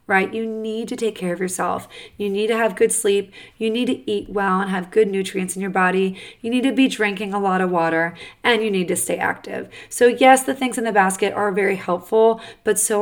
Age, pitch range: 30-49, 185-225 Hz